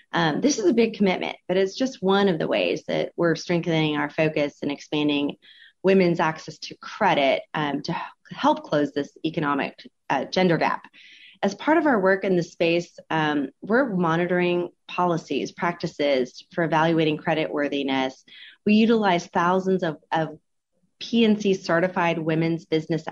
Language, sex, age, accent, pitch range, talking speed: English, female, 30-49, American, 155-185 Hz, 150 wpm